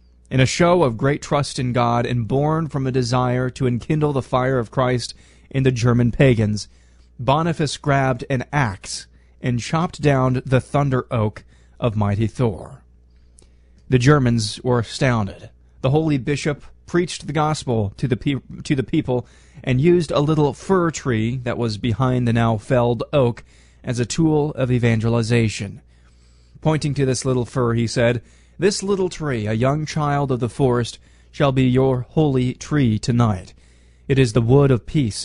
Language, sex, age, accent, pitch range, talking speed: English, male, 30-49, American, 110-140 Hz, 165 wpm